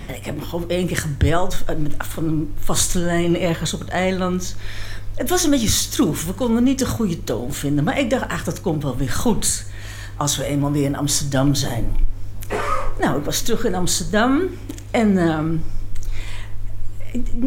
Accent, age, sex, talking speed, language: Dutch, 60-79, female, 180 wpm, Dutch